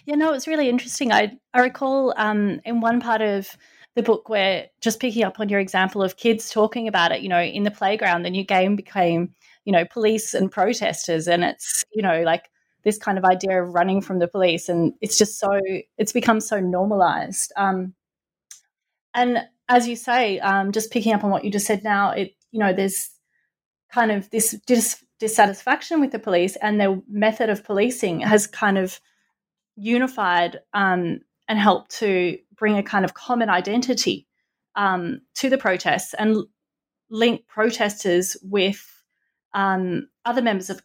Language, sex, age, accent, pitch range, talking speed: English, female, 30-49, Australian, 190-230 Hz, 180 wpm